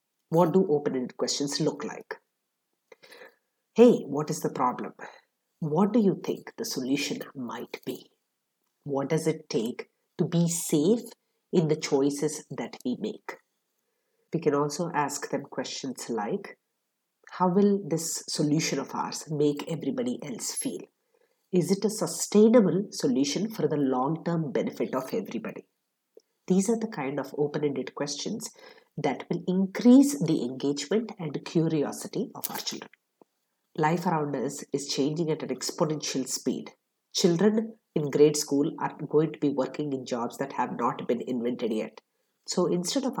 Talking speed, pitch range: 145 wpm, 145-215 Hz